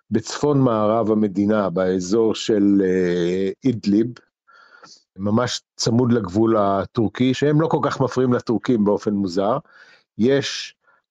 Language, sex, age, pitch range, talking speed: Hebrew, male, 50-69, 105-130 Hz, 105 wpm